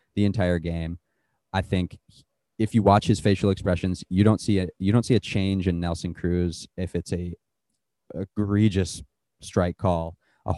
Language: English